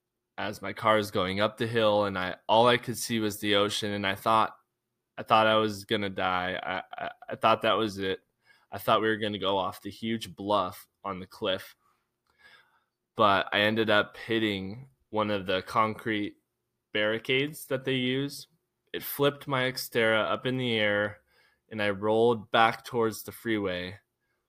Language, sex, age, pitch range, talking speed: English, male, 20-39, 100-115 Hz, 185 wpm